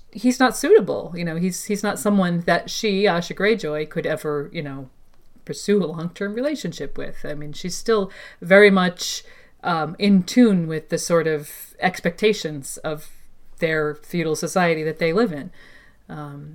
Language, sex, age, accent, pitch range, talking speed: English, female, 40-59, American, 150-205 Hz, 165 wpm